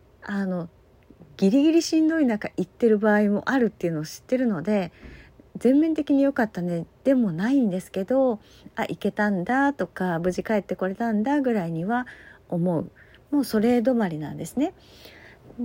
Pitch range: 180-255 Hz